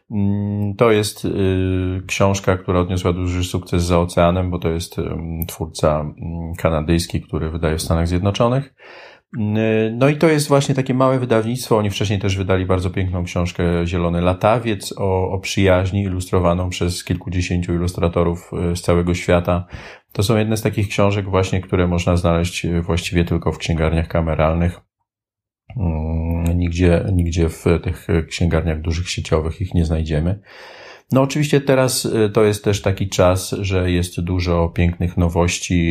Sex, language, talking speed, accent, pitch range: male, Polish, 140 wpm, native, 85-95 Hz